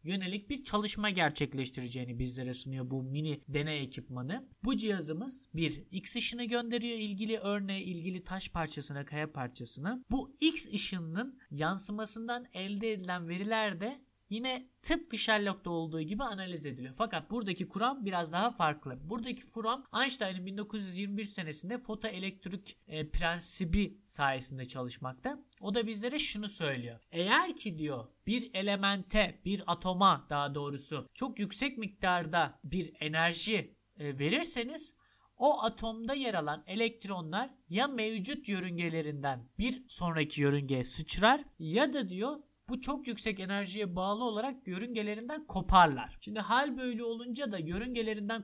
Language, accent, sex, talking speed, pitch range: Turkish, native, male, 130 wpm, 160-230 Hz